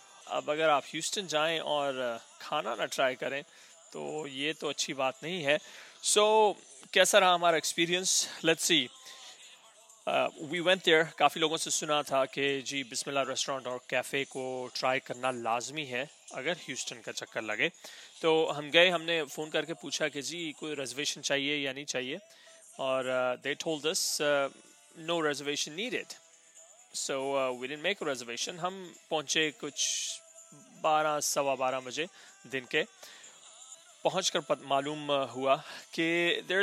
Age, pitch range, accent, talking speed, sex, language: 30-49, 135-165 Hz, Indian, 115 wpm, male, English